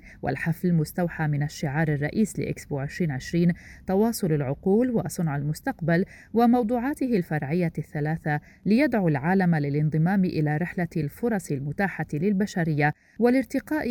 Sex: female